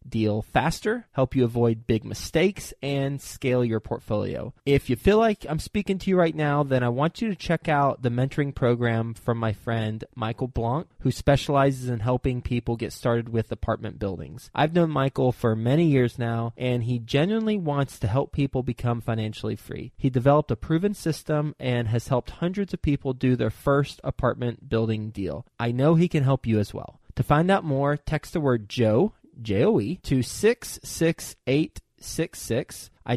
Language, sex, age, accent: English, male, 20-39, American